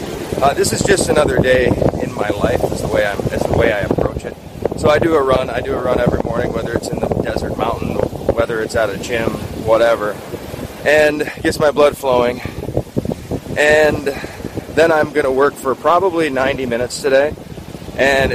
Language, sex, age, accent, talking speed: English, male, 30-49, American, 195 wpm